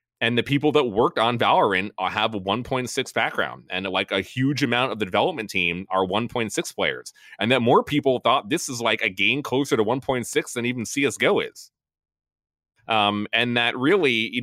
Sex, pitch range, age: male, 90-120 Hz, 30-49